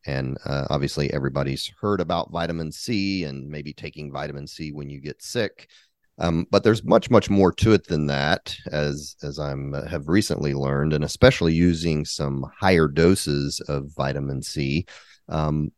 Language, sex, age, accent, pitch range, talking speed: English, male, 30-49, American, 70-85 Hz, 165 wpm